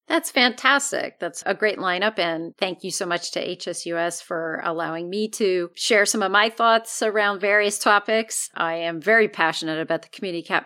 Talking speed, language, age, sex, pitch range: 185 wpm, English, 40-59, female, 170-220 Hz